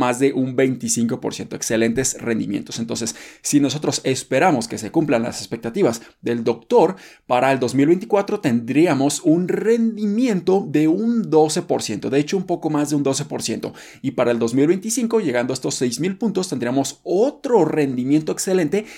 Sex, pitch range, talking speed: male, 130-185 Hz, 150 wpm